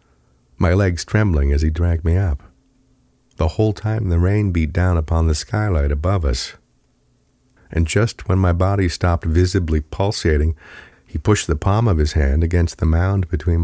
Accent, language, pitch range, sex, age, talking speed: American, English, 75-90 Hz, male, 50-69, 170 wpm